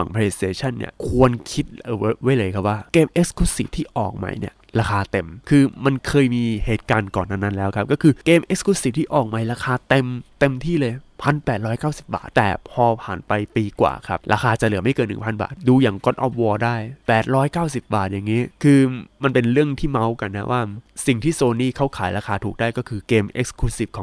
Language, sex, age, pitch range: Thai, male, 20-39, 105-140 Hz